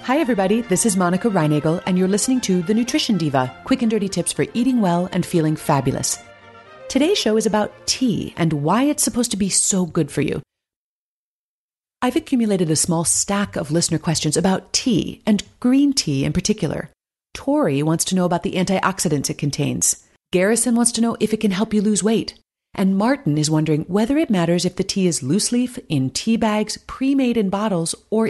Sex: female